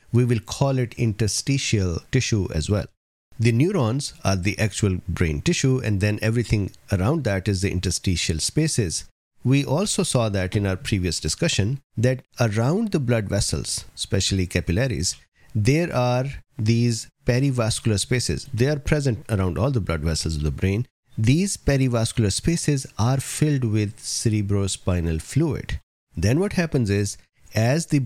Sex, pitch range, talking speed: male, 95-135 Hz, 150 wpm